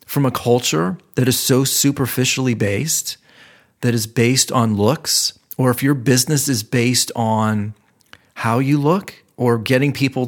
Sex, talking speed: male, 150 wpm